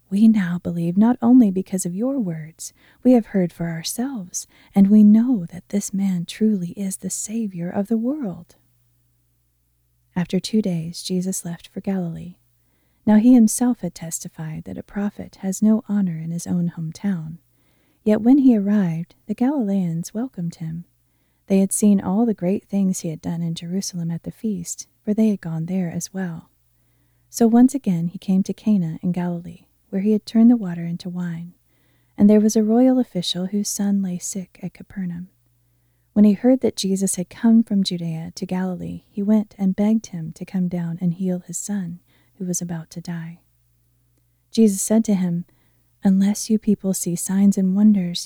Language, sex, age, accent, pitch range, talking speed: English, female, 30-49, American, 170-210 Hz, 185 wpm